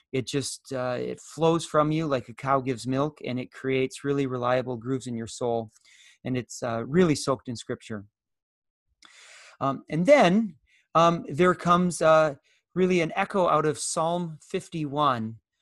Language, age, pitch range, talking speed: English, 30-49, 125-180 Hz, 160 wpm